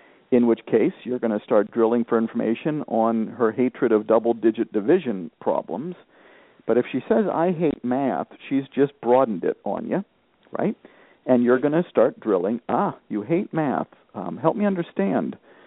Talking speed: 170 wpm